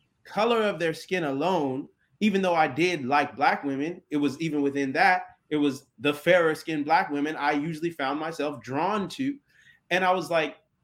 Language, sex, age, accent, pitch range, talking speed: English, male, 30-49, American, 145-190 Hz, 190 wpm